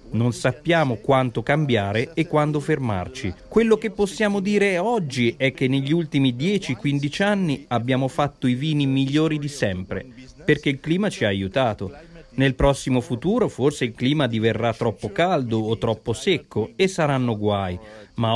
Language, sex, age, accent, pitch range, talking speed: Italian, male, 40-59, native, 125-170 Hz, 155 wpm